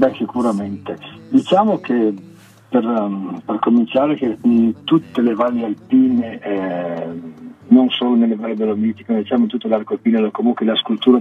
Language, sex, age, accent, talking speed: Italian, male, 50-69, native, 155 wpm